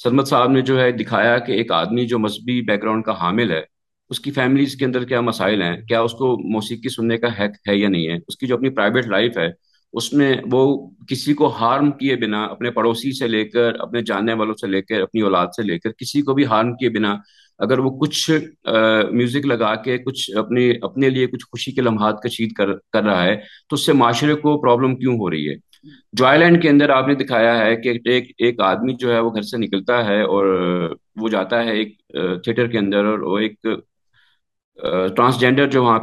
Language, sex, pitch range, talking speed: Urdu, male, 105-130 Hz, 225 wpm